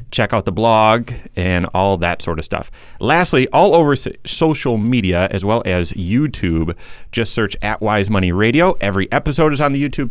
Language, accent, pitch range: English, American, 105-145 Hz